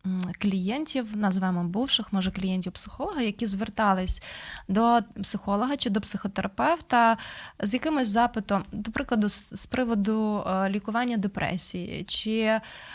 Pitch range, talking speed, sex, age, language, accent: 190-230 Hz, 95 wpm, female, 20-39, Ukrainian, native